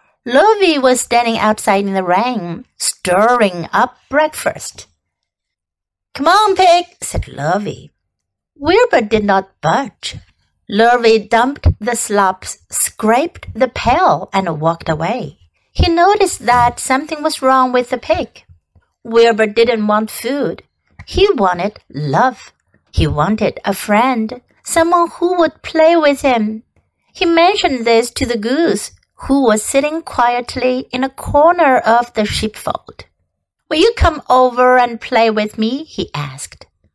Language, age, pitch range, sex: Chinese, 60-79, 210-305 Hz, female